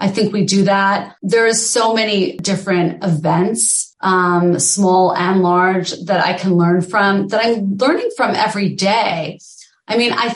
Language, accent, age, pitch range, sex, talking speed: English, American, 30-49, 190-265 Hz, female, 170 wpm